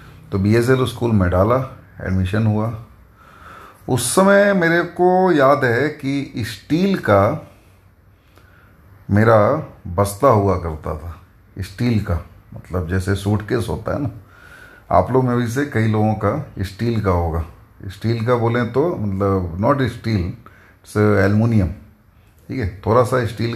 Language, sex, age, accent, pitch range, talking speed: Hindi, male, 30-49, native, 95-120 Hz, 140 wpm